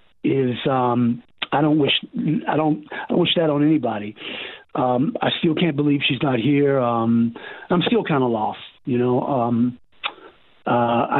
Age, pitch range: 40-59, 125-155 Hz